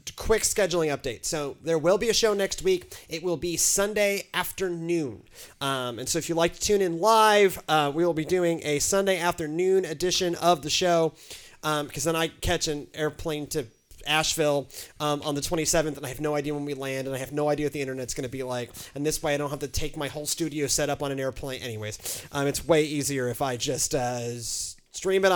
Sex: male